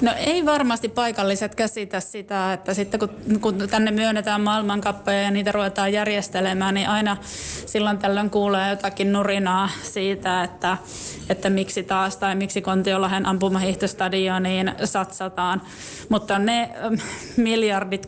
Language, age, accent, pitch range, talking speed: Finnish, 20-39, native, 185-205 Hz, 125 wpm